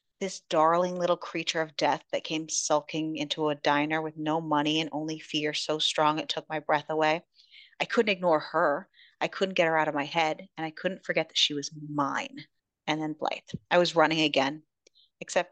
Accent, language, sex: American, English, female